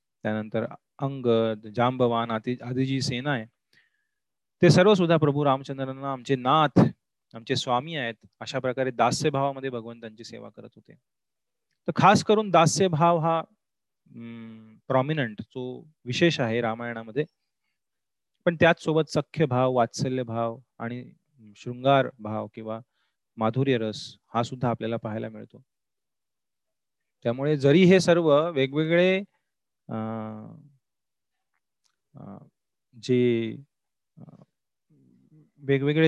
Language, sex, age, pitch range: Marathi, male, 30-49, 120-150 Hz